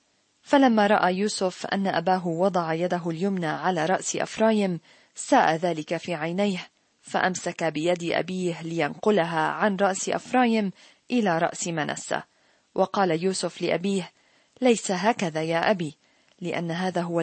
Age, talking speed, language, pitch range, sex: 40-59, 120 wpm, Arabic, 170-210 Hz, female